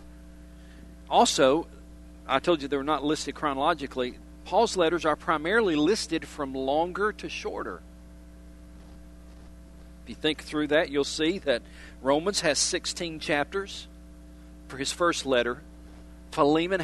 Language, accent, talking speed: English, American, 125 wpm